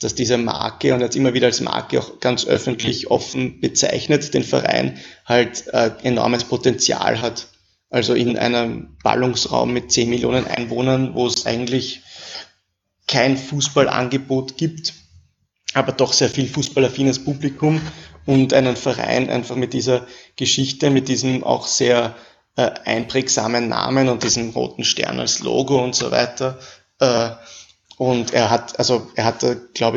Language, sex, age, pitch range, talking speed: German, male, 20-39, 115-130 Hz, 140 wpm